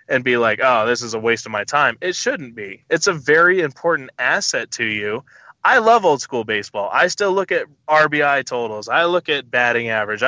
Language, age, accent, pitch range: English, 20-39, American, 125-160 Hz